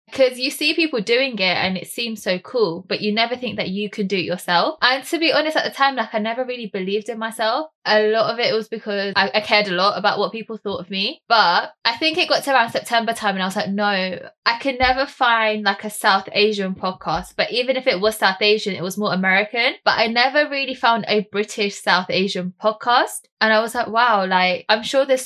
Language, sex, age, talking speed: English, female, 10-29, 250 wpm